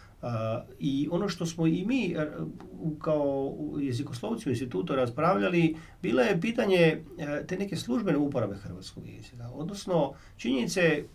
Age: 40-59